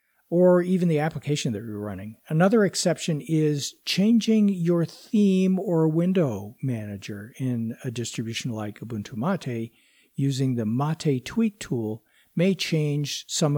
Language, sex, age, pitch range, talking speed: English, male, 60-79, 110-150 Hz, 135 wpm